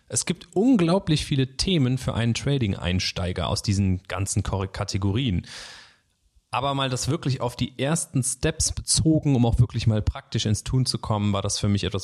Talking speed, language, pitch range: 175 wpm, German, 95-120 Hz